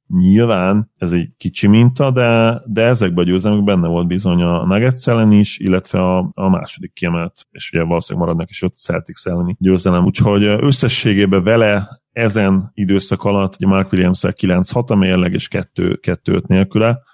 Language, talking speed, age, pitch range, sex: Hungarian, 160 wpm, 30-49, 90-105 Hz, male